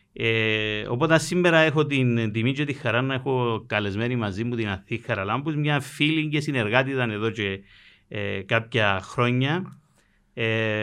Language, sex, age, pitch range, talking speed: Greek, male, 50-69, 110-145 Hz, 160 wpm